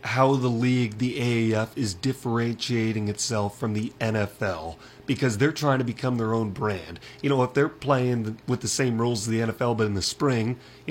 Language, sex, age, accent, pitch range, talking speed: English, male, 30-49, American, 110-130 Hz, 200 wpm